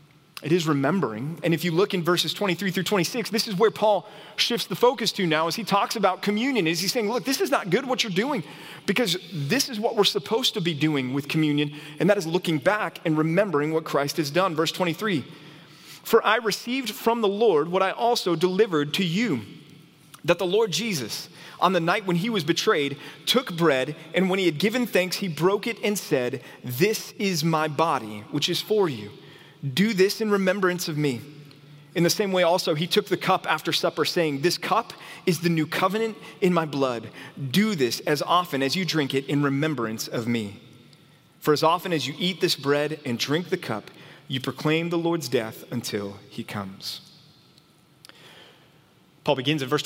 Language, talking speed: English, 200 wpm